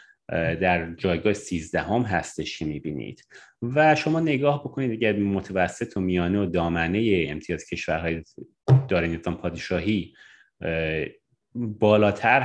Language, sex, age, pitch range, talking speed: Persian, male, 30-49, 90-120 Hz, 110 wpm